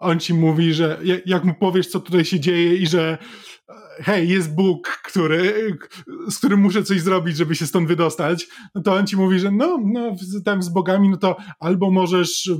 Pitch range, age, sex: 170-210 Hz, 20-39, male